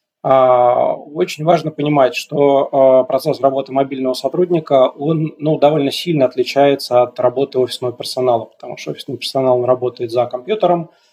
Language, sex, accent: Russian, male, native